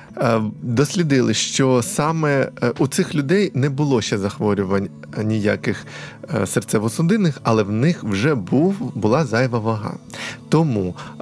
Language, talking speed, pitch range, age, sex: Ukrainian, 110 wpm, 105-145 Hz, 20-39, male